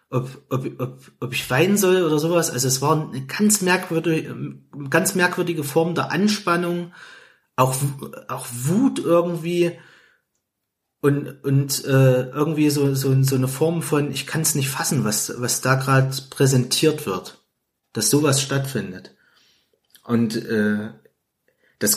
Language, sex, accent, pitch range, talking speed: German, male, German, 130-155 Hz, 140 wpm